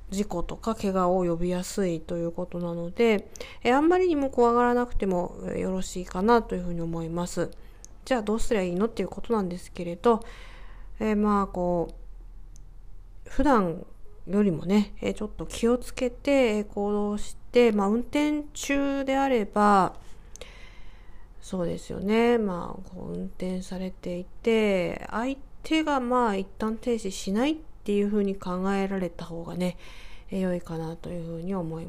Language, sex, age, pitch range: Japanese, female, 40-59, 175-230 Hz